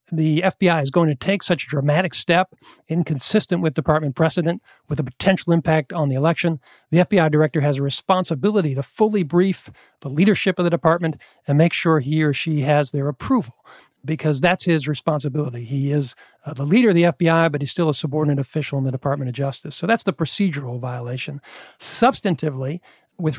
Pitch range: 145-180 Hz